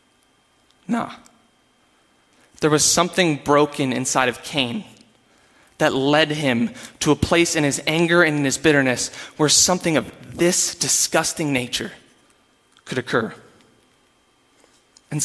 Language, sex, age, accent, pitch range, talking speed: English, male, 20-39, American, 145-190 Hz, 120 wpm